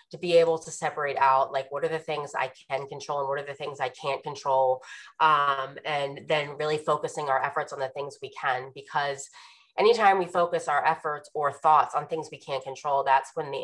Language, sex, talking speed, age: English, female, 220 wpm, 20-39